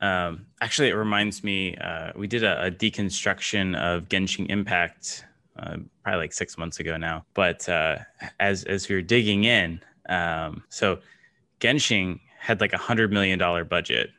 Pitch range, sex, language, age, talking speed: 95-110 Hz, male, English, 20-39, 165 wpm